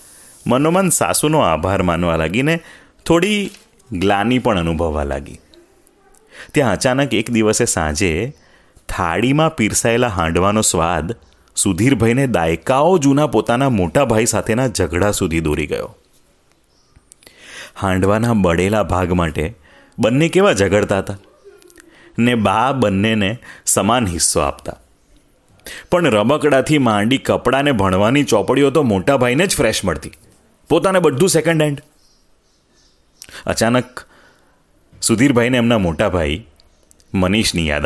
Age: 30-49